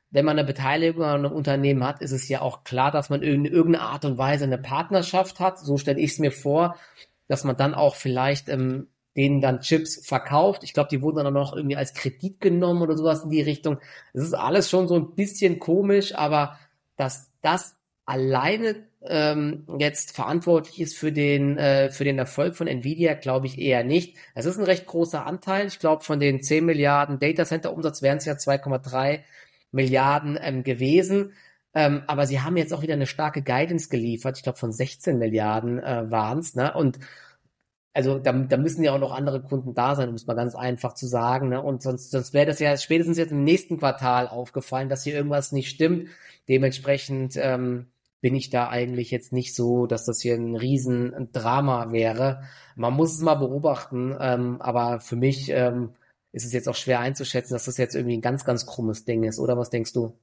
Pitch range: 130-155 Hz